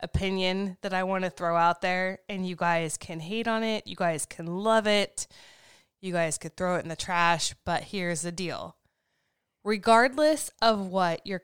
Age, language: 20-39, English